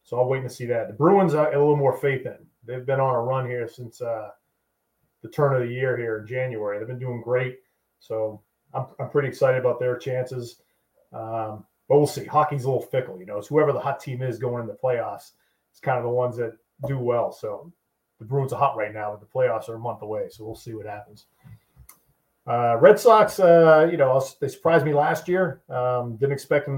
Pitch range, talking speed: 120-145 Hz, 235 wpm